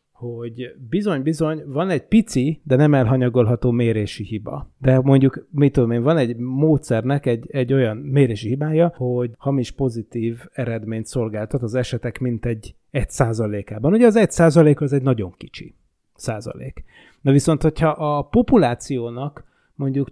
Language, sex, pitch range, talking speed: Hungarian, male, 120-150 Hz, 145 wpm